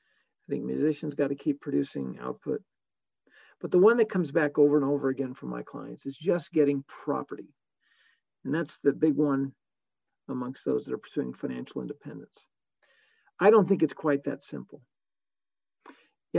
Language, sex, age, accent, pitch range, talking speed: English, male, 50-69, American, 140-185 Hz, 165 wpm